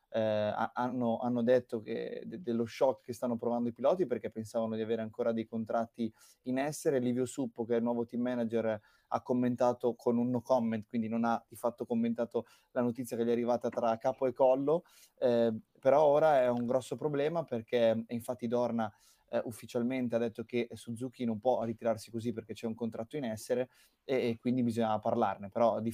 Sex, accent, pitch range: male, native, 115-130 Hz